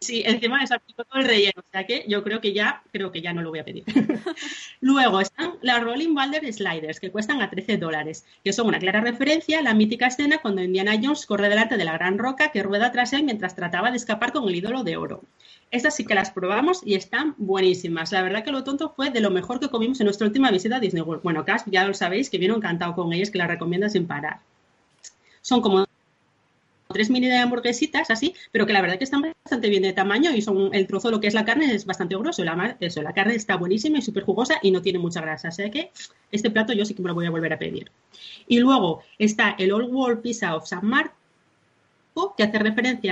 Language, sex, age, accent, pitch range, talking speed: Spanish, female, 30-49, Spanish, 190-250 Hz, 240 wpm